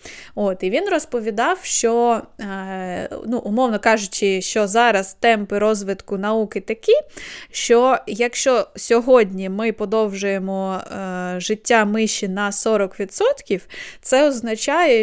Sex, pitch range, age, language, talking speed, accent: female, 205-260 Hz, 20-39, Ukrainian, 100 wpm, native